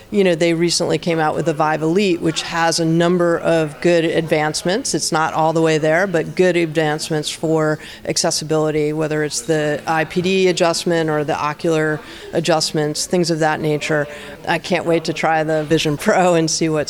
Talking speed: 185 wpm